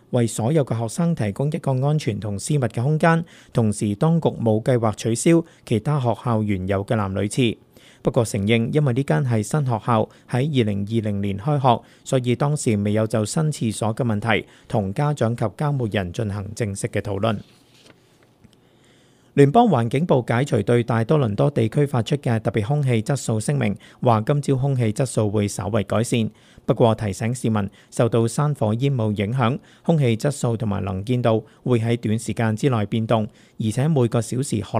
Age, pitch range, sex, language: 50-69, 110-135 Hz, male, Chinese